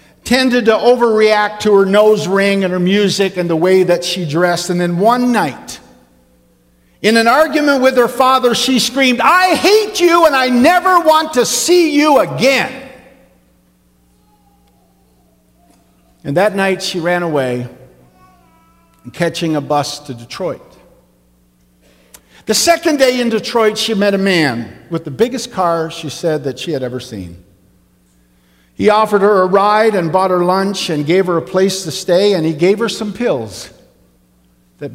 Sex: male